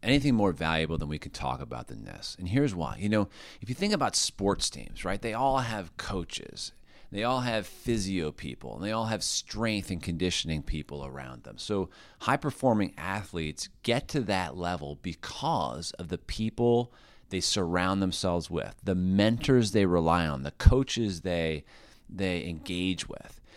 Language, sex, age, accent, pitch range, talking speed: English, male, 30-49, American, 85-120 Hz, 170 wpm